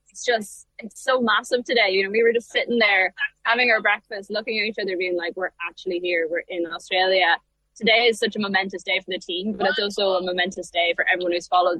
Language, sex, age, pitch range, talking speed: English, female, 10-29, 190-235 Hz, 240 wpm